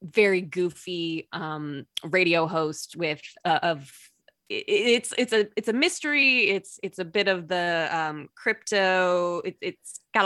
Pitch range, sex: 160-205 Hz, female